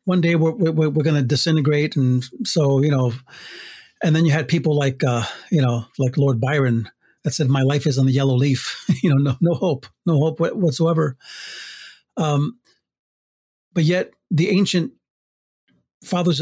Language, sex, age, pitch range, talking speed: English, male, 40-59, 135-170 Hz, 170 wpm